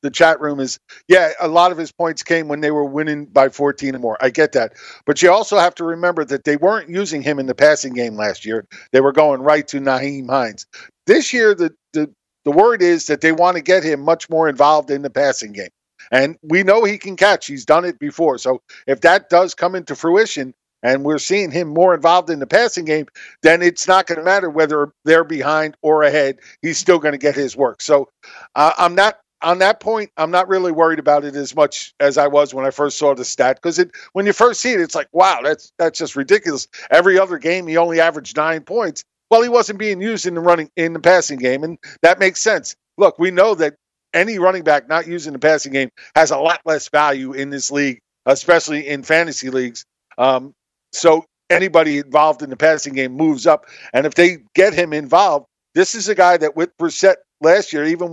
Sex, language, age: male, English, 50-69